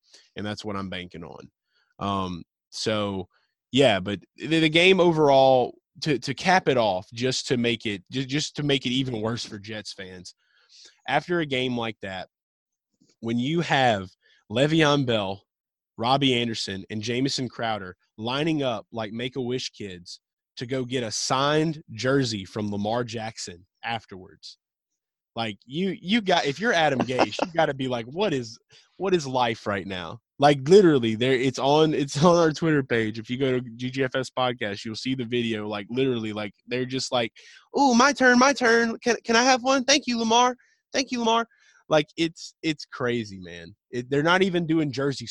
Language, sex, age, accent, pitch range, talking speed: English, male, 20-39, American, 110-150 Hz, 175 wpm